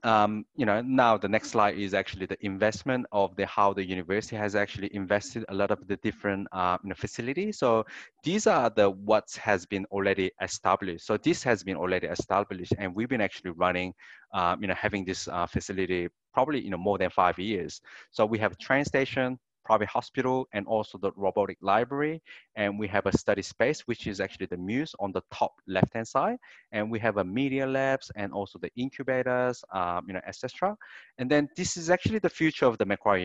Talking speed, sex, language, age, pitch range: 210 wpm, male, Russian, 20-39, 100-130 Hz